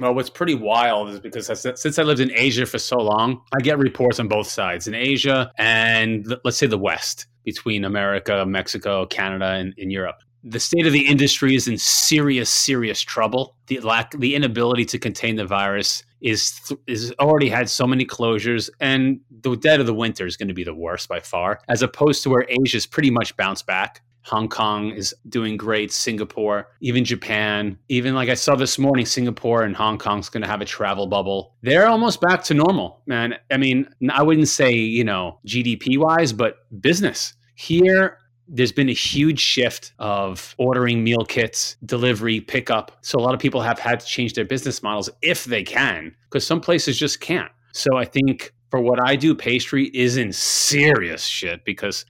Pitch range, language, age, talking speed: 110-135 Hz, English, 30-49, 195 wpm